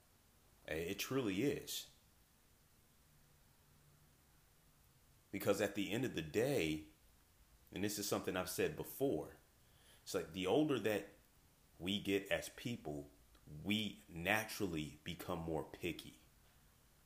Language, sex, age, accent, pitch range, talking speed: English, male, 30-49, American, 80-105 Hz, 110 wpm